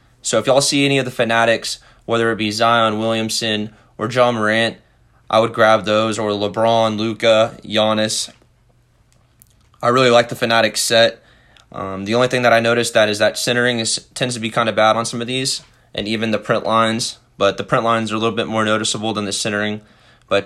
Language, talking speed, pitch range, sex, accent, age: English, 210 wpm, 105-120 Hz, male, American, 20-39